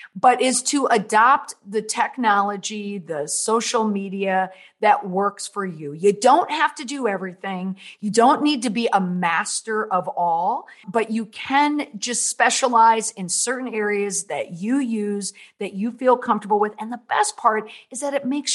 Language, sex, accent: English, female, American